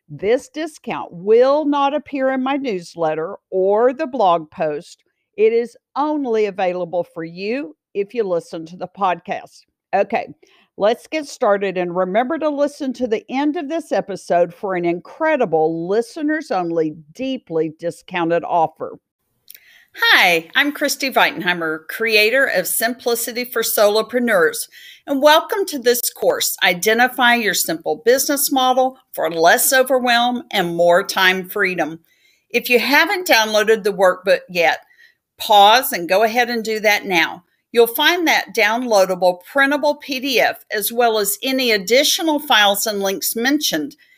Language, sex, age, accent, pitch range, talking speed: English, female, 50-69, American, 185-285 Hz, 140 wpm